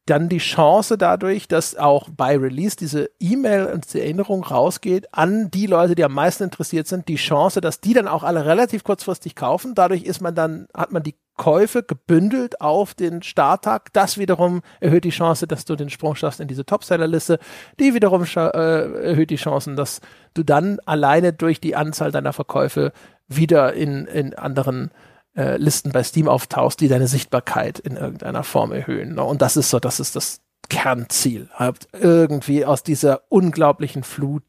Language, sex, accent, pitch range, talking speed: German, male, German, 140-175 Hz, 180 wpm